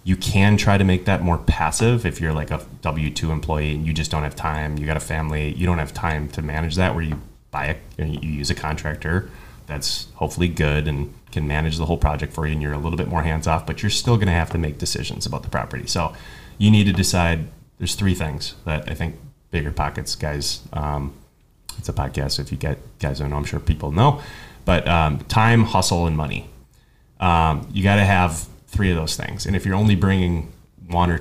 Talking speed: 235 wpm